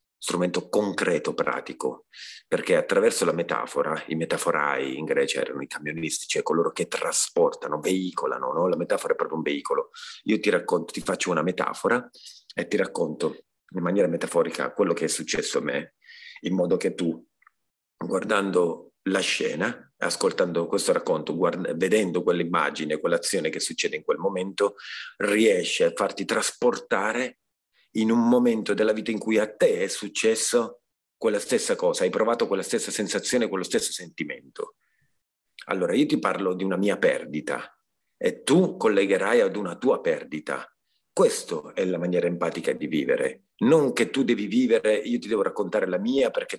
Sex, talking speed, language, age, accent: male, 160 wpm, Italian, 40-59, native